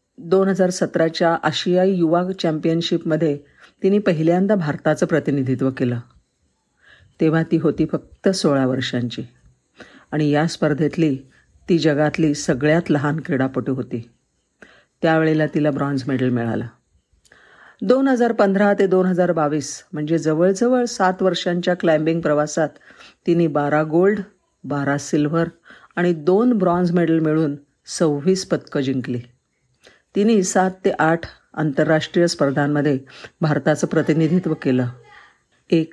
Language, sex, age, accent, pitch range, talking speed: Marathi, female, 50-69, native, 145-180 Hz, 105 wpm